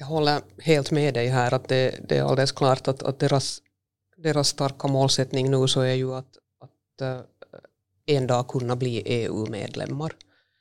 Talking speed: 165 wpm